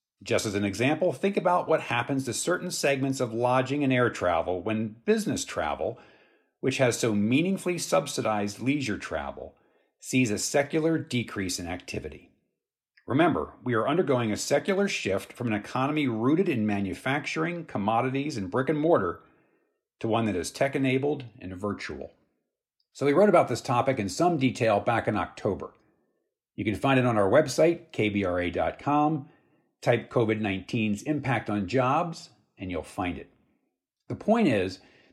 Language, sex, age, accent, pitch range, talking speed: English, male, 50-69, American, 105-145 Hz, 150 wpm